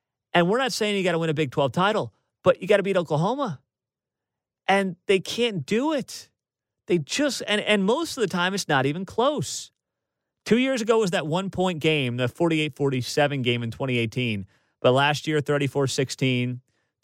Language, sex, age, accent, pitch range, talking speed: English, male, 30-49, American, 130-175 Hz, 180 wpm